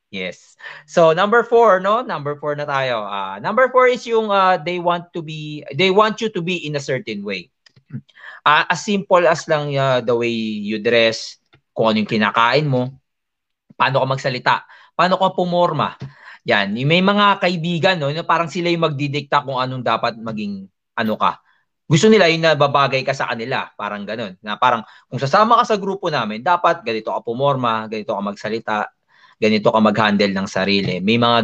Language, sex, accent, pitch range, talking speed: Filipino, male, native, 115-170 Hz, 185 wpm